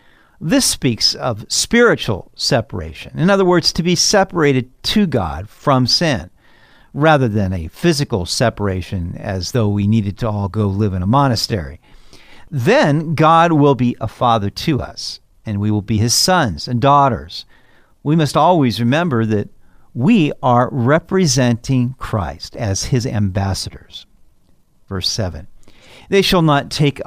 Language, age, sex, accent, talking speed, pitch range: English, 50-69, male, American, 145 wpm, 110-160 Hz